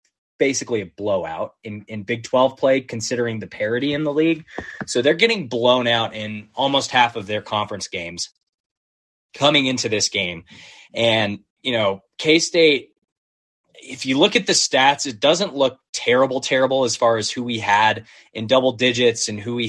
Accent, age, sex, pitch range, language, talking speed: American, 20-39, male, 100-130 Hz, English, 175 wpm